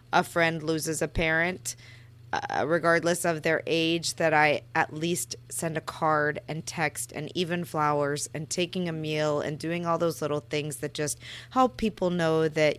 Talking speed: 180 wpm